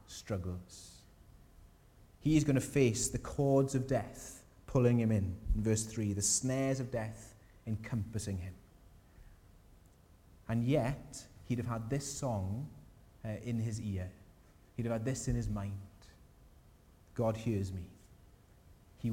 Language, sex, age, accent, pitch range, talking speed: English, male, 30-49, British, 95-125 Hz, 135 wpm